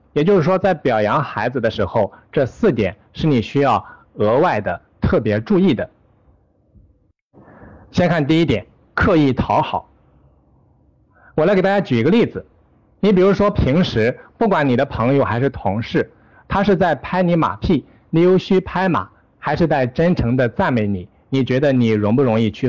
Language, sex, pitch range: Chinese, male, 110-150 Hz